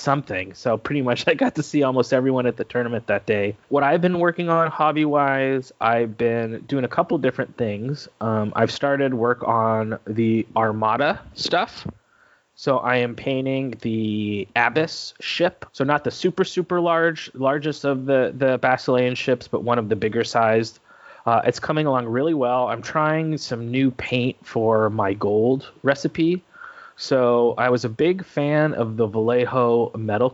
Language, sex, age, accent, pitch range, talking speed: English, male, 20-39, American, 115-140 Hz, 170 wpm